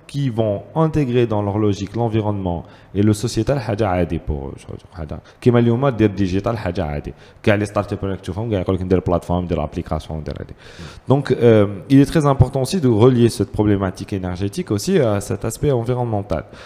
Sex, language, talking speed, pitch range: male, French, 170 wpm, 95-130 Hz